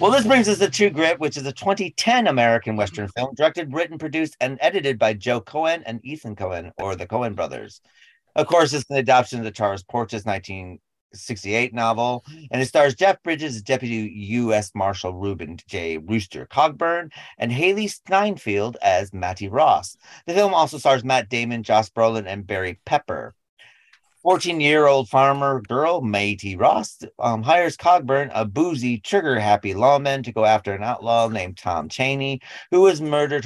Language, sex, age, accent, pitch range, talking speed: English, male, 30-49, American, 110-150 Hz, 165 wpm